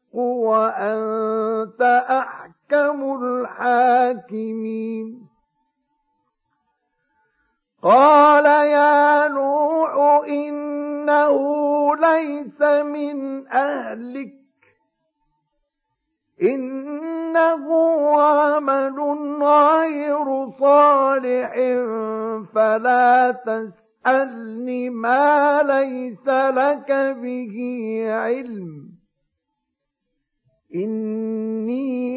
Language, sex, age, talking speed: Arabic, male, 50-69, 40 wpm